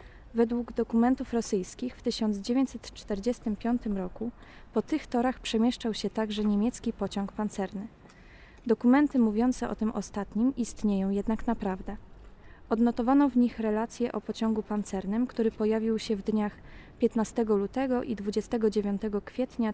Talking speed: 120 wpm